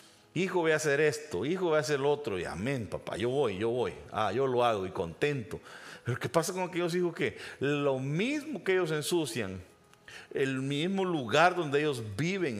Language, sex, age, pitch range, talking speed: Spanish, male, 50-69, 135-185 Hz, 200 wpm